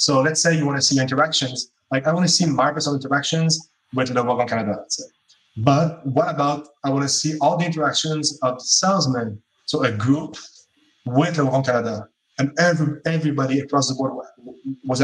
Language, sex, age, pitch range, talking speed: English, male, 20-39, 125-150 Hz, 190 wpm